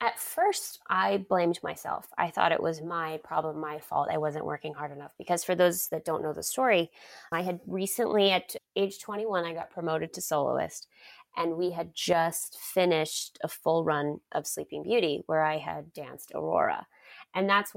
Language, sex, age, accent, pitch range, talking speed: English, female, 20-39, American, 160-195 Hz, 185 wpm